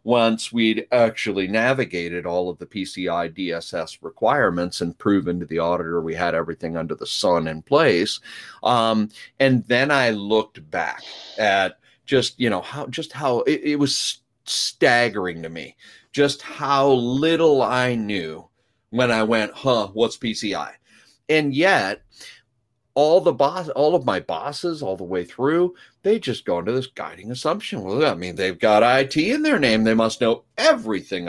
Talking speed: 165 wpm